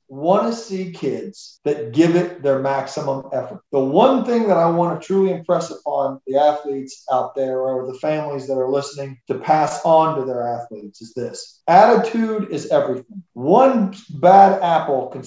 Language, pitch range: English, 145-195 Hz